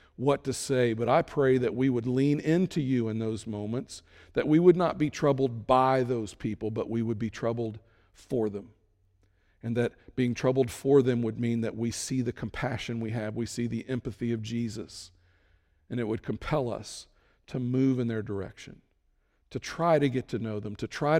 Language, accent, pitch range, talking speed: English, American, 105-125 Hz, 200 wpm